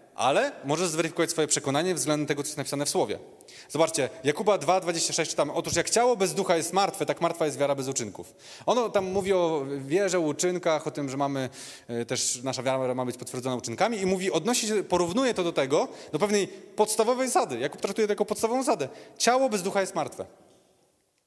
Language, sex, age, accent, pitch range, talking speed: Polish, male, 30-49, native, 135-180 Hz, 195 wpm